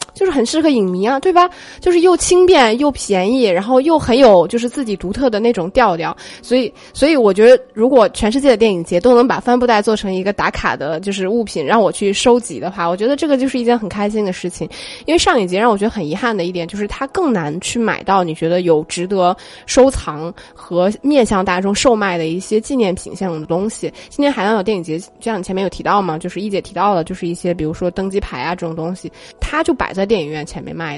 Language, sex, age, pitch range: Chinese, female, 20-39, 180-250 Hz